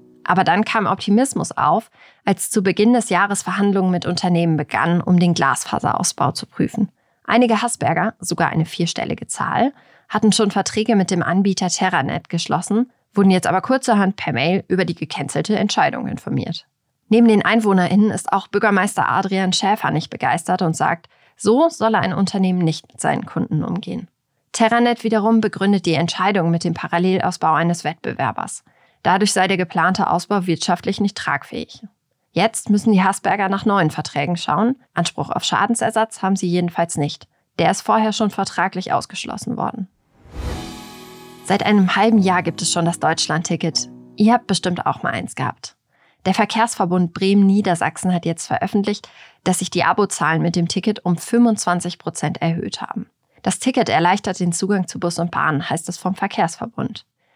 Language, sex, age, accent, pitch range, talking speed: German, female, 30-49, German, 170-210 Hz, 160 wpm